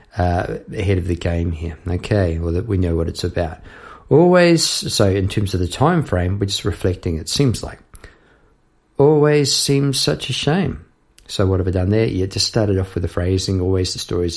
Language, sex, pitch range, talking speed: English, male, 90-120 Hz, 200 wpm